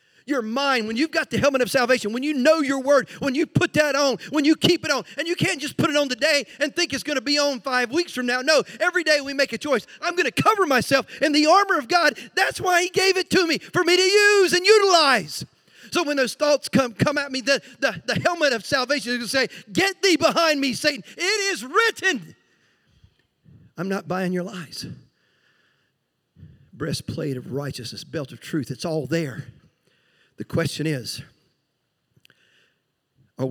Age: 40-59